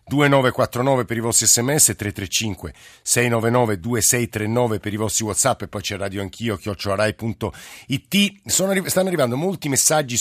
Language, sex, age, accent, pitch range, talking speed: Italian, male, 50-69, native, 110-135 Hz, 120 wpm